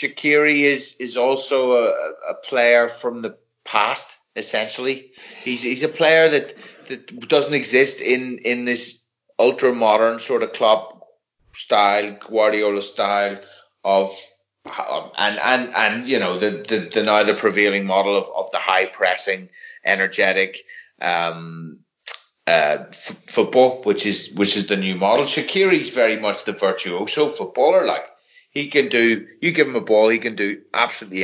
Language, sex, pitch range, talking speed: English, male, 100-125 Hz, 150 wpm